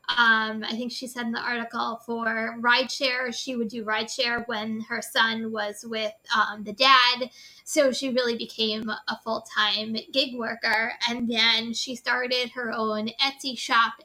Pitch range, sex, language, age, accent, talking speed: 220-250 Hz, female, English, 20-39, American, 160 wpm